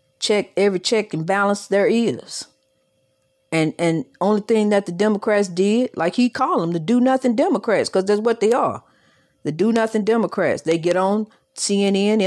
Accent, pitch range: American, 190-235 Hz